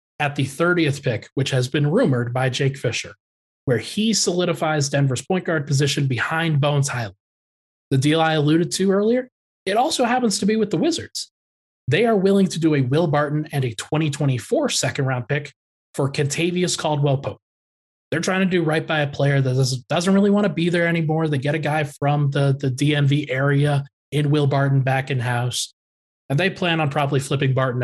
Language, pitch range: English, 130-160 Hz